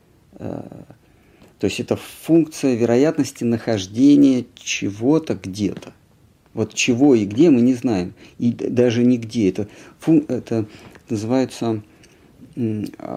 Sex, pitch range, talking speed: male, 105-135 Hz, 95 wpm